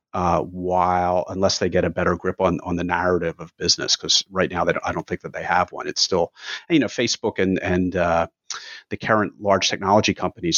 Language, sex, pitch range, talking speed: English, male, 90-105 Hz, 215 wpm